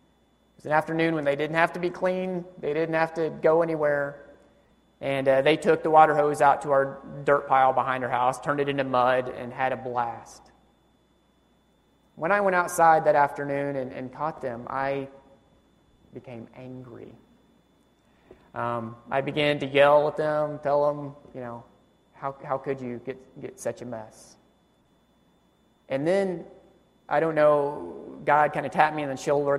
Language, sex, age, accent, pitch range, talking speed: English, male, 30-49, American, 125-150 Hz, 170 wpm